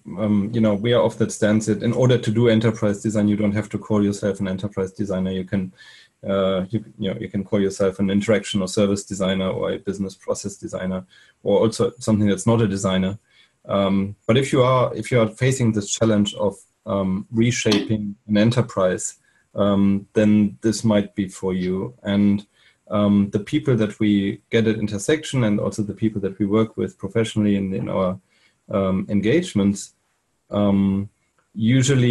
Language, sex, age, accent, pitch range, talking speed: English, male, 30-49, German, 100-110 Hz, 185 wpm